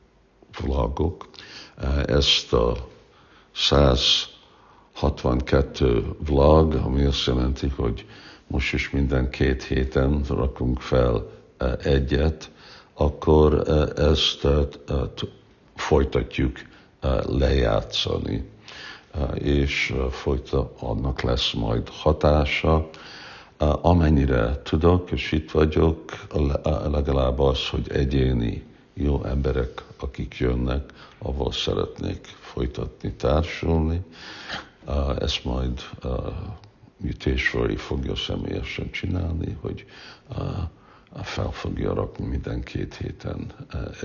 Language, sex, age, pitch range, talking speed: Hungarian, male, 60-79, 70-80 Hz, 85 wpm